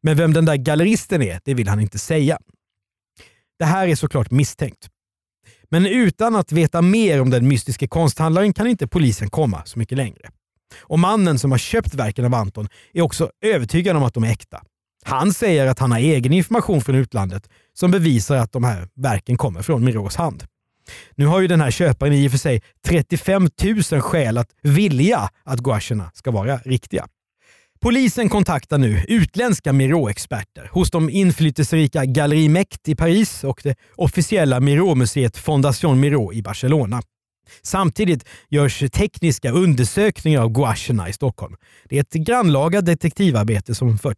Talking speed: 165 wpm